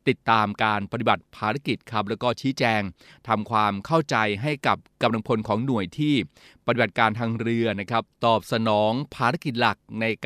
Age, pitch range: 20-39, 110-130 Hz